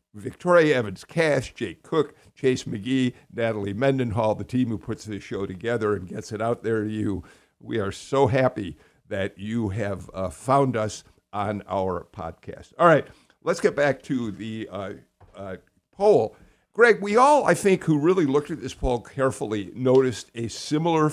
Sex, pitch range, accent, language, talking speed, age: male, 110-155 Hz, American, English, 170 wpm, 60-79